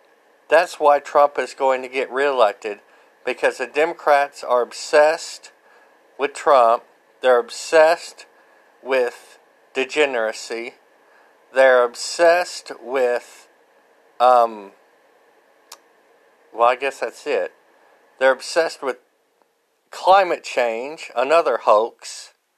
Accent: American